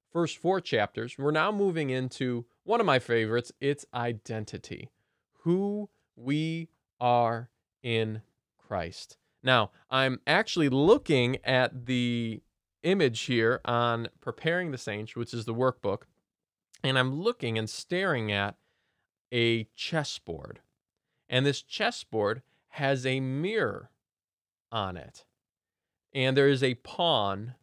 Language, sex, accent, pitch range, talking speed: English, male, American, 115-160 Hz, 120 wpm